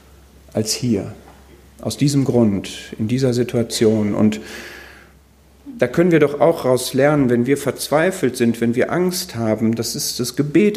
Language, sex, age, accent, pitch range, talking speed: German, male, 50-69, German, 75-120 Hz, 155 wpm